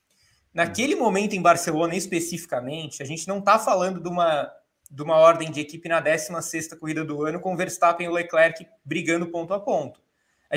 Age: 20-39